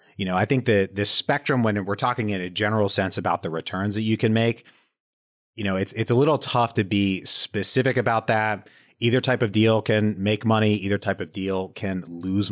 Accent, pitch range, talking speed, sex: American, 95-120 Hz, 220 wpm, male